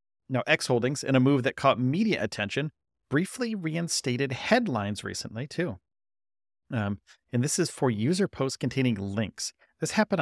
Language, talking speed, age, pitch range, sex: English, 155 wpm, 40-59, 110-145 Hz, male